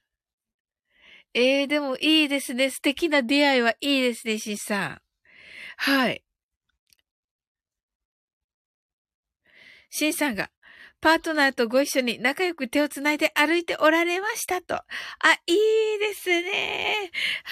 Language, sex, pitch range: Japanese, female, 265-400 Hz